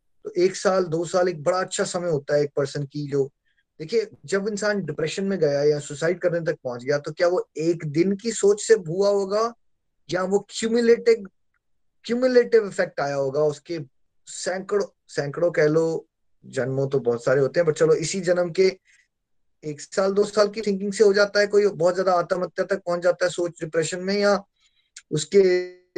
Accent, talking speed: native, 145 wpm